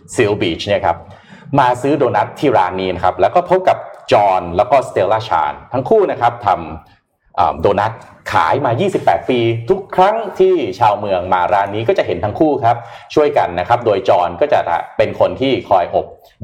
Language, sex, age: Thai, male, 30-49